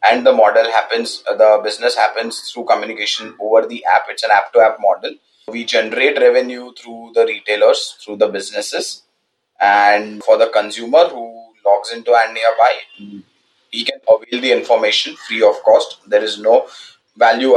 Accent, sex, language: Indian, male, English